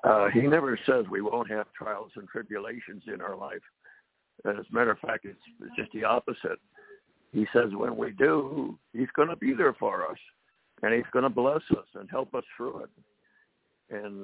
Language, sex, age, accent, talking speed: English, male, 60-79, American, 200 wpm